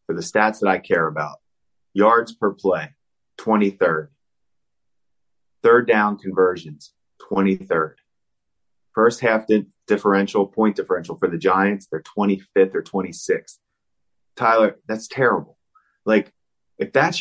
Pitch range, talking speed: 95-135 Hz, 115 wpm